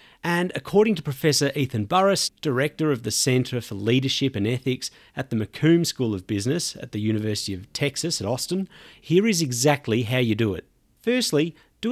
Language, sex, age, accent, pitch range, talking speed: English, male, 40-59, Australian, 120-160 Hz, 180 wpm